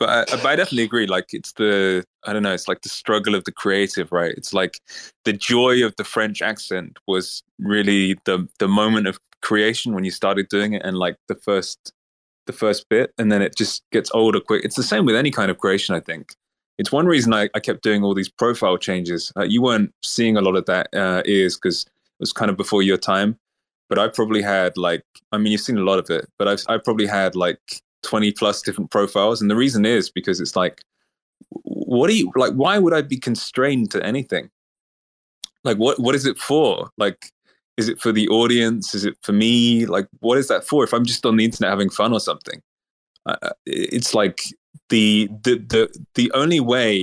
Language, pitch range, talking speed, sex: English, 95-110 Hz, 220 wpm, male